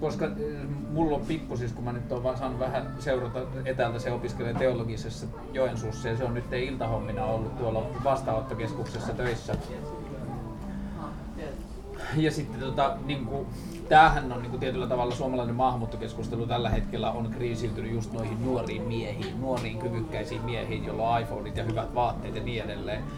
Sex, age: male, 30-49